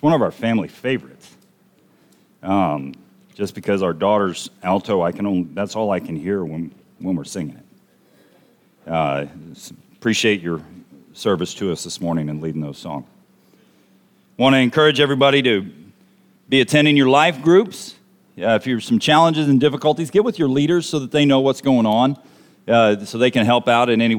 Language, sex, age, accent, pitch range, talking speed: English, male, 40-59, American, 115-170 Hz, 180 wpm